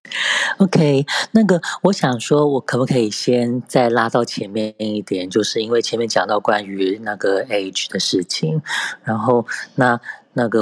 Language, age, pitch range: Chinese, 20-39, 105-130 Hz